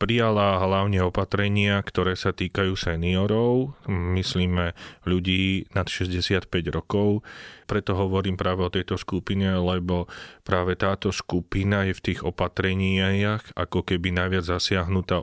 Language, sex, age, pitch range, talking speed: Slovak, male, 30-49, 90-95 Hz, 120 wpm